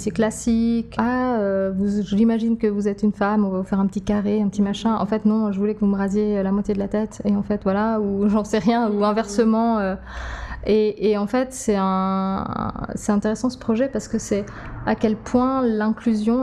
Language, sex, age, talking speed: French, female, 20-39, 230 wpm